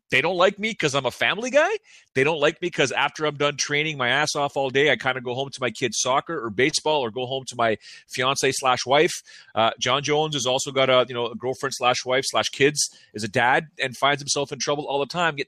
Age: 30-49